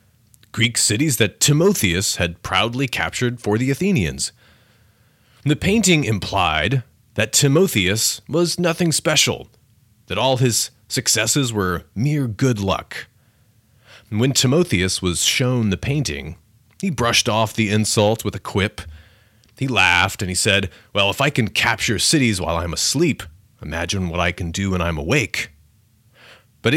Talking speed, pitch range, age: 140 wpm, 100-125 Hz, 30-49